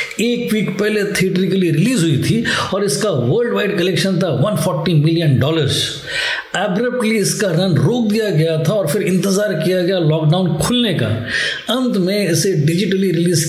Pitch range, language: 160-200 Hz, Hindi